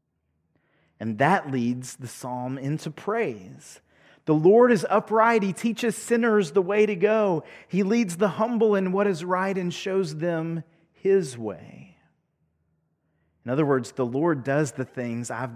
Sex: male